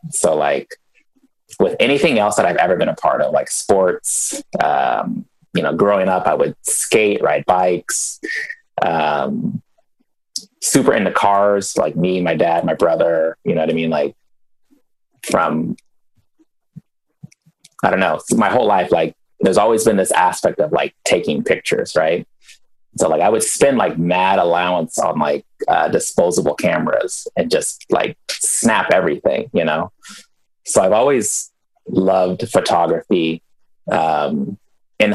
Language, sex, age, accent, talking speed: English, male, 30-49, American, 145 wpm